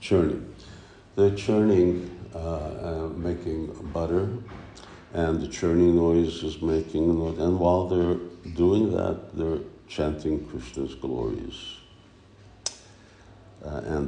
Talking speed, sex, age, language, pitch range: 100 wpm, male, 60-79, English, 80-90 Hz